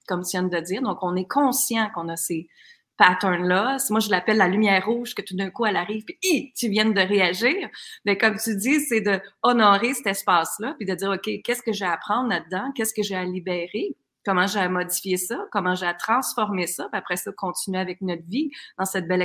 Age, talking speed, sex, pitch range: 30-49, 230 wpm, female, 185-240 Hz